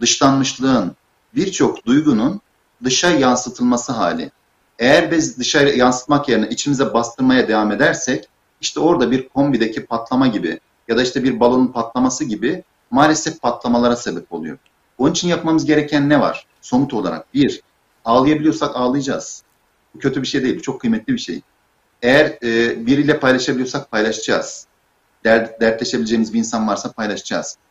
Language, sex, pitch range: Turkish, male, 120-160 Hz